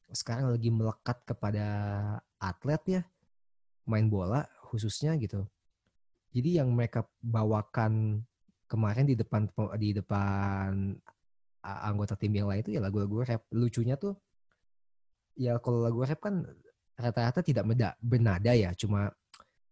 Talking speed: 120 wpm